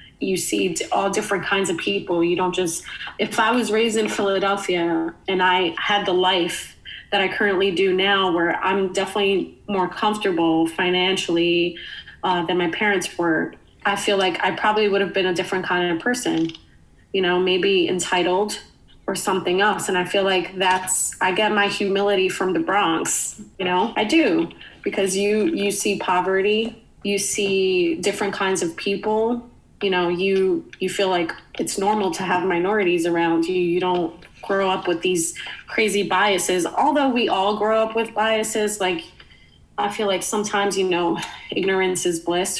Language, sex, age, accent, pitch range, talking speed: English, female, 30-49, American, 180-205 Hz, 170 wpm